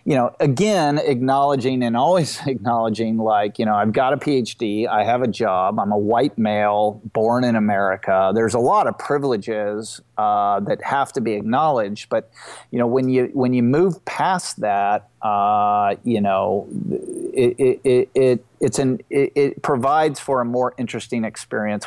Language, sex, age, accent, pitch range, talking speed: English, male, 30-49, American, 110-140 Hz, 175 wpm